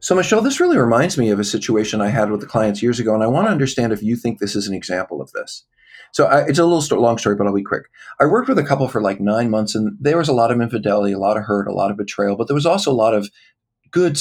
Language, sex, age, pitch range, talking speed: English, male, 40-59, 105-140 Hz, 305 wpm